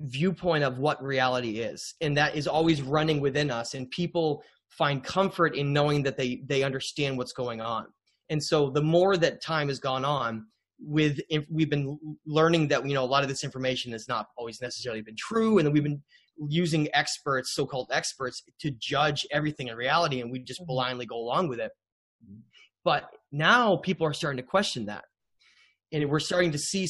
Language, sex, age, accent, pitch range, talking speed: English, male, 20-39, American, 130-160 Hz, 195 wpm